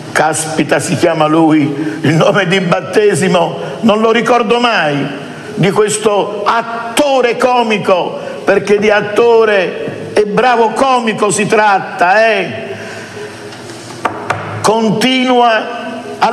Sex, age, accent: male, 50-69, native